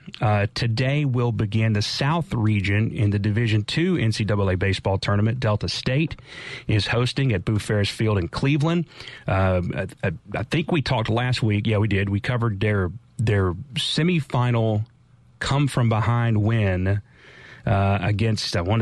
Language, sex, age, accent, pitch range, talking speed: English, male, 30-49, American, 100-125 Hz, 160 wpm